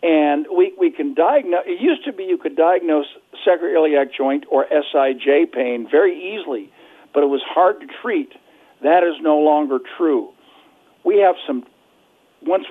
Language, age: English, 50-69